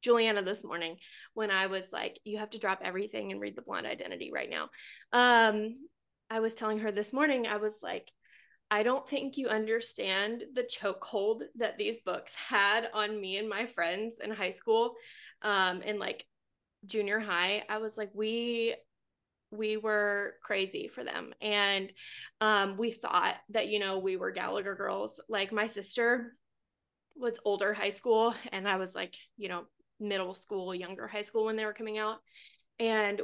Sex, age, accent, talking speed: female, 20-39, American, 175 wpm